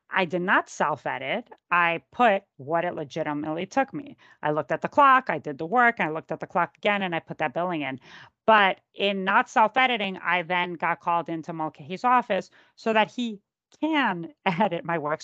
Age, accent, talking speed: 40-59, American, 195 wpm